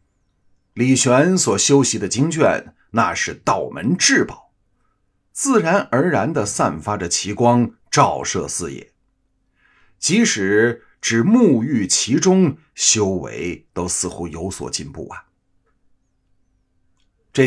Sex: male